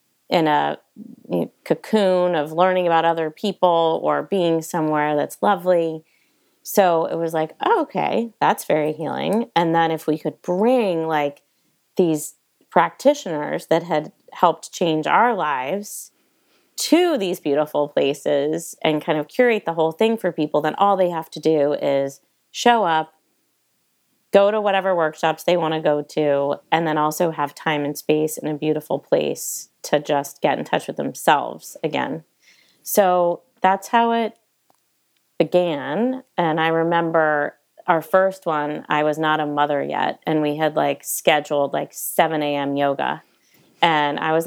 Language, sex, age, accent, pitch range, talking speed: English, female, 30-49, American, 155-200 Hz, 155 wpm